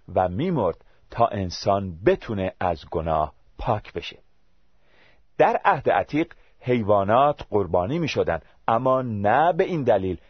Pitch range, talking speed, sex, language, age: 90-135 Hz, 115 wpm, male, Persian, 40-59